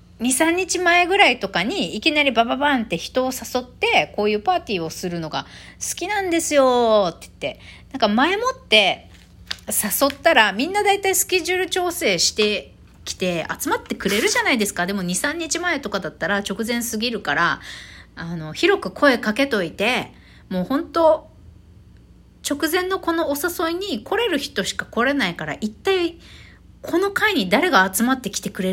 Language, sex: Japanese, female